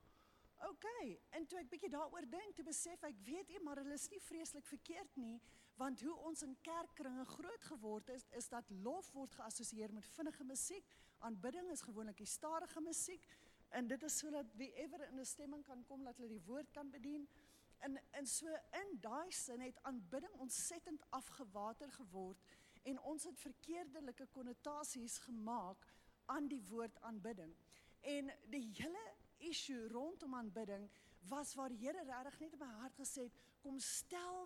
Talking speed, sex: 170 wpm, female